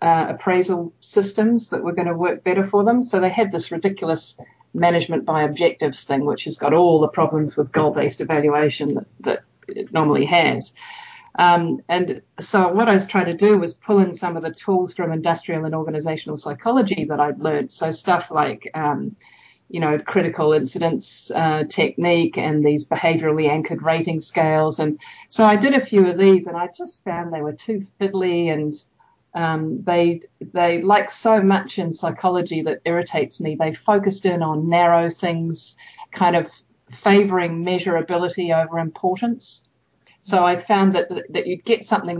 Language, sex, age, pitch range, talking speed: English, female, 50-69, 160-195 Hz, 175 wpm